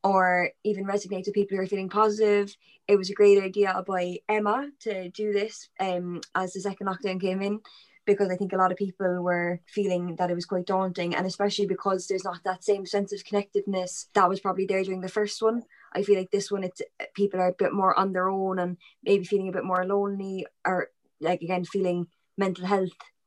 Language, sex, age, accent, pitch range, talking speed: English, female, 20-39, Irish, 185-205 Hz, 220 wpm